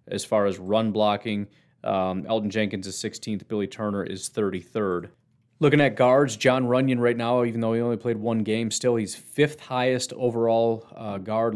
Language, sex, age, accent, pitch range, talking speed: English, male, 30-49, American, 105-125 Hz, 180 wpm